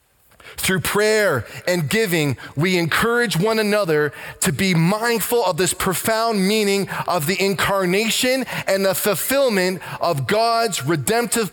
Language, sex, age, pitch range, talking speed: English, male, 20-39, 115-190 Hz, 125 wpm